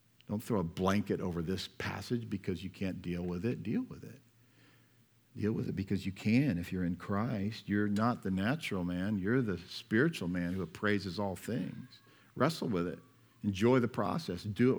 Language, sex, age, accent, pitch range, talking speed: English, male, 50-69, American, 100-130 Hz, 190 wpm